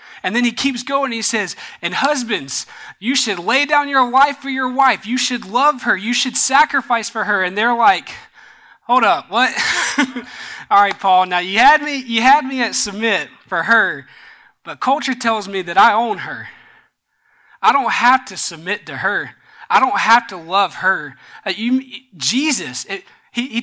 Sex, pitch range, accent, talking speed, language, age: male, 205-265 Hz, American, 190 wpm, English, 20-39